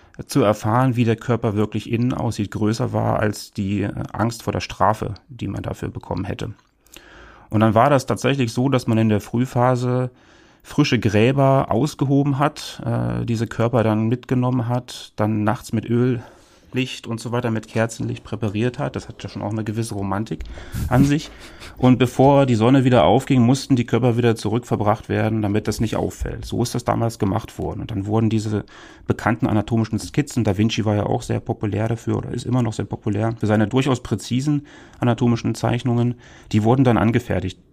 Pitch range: 105-125 Hz